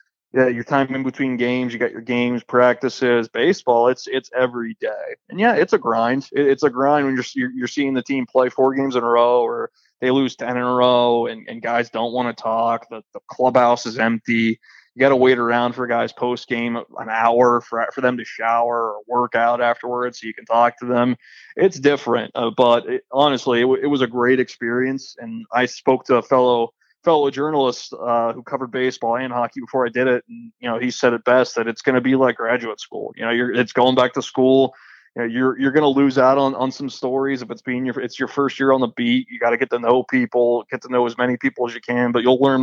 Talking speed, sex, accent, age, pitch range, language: 245 wpm, male, American, 20-39, 120-130 Hz, English